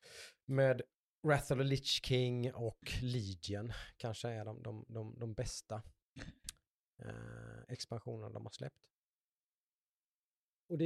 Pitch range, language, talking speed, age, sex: 105-125 Hz, Swedish, 110 wpm, 30-49, male